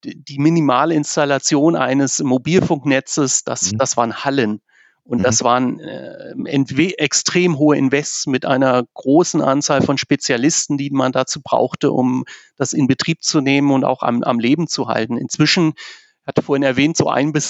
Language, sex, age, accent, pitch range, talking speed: German, male, 40-59, German, 130-155 Hz, 160 wpm